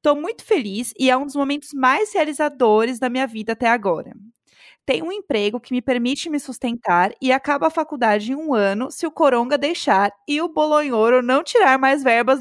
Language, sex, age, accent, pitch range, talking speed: Portuguese, female, 20-39, Brazilian, 225-300 Hz, 200 wpm